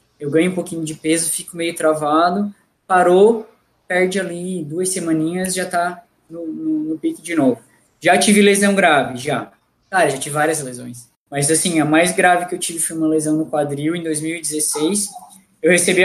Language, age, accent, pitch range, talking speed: Portuguese, 20-39, Brazilian, 155-190 Hz, 185 wpm